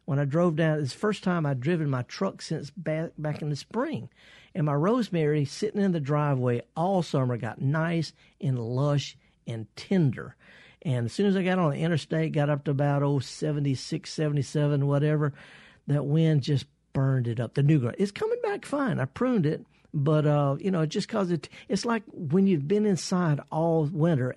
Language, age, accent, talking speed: English, 50-69, American, 200 wpm